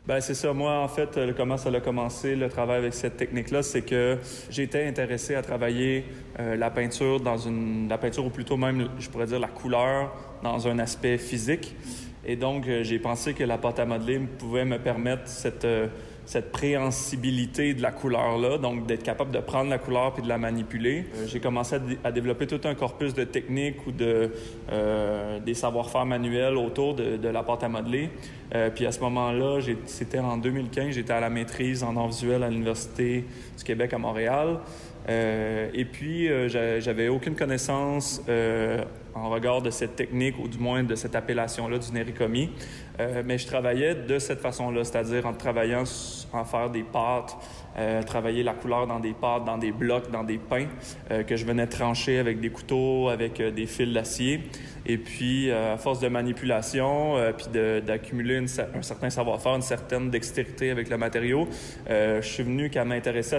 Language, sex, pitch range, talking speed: French, male, 115-130 Hz, 195 wpm